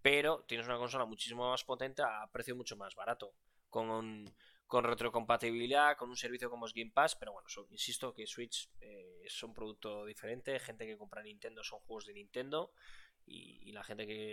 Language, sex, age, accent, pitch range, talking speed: Spanish, male, 20-39, Spanish, 110-145 Hz, 195 wpm